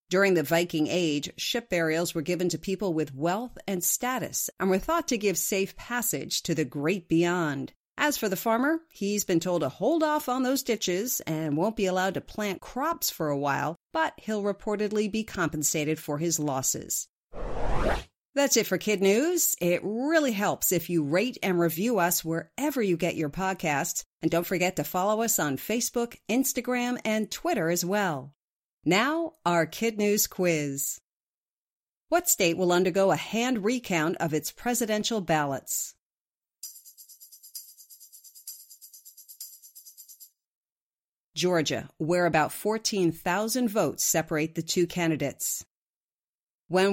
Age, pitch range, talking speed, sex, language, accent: 50-69, 165-225 Hz, 145 wpm, female, English, American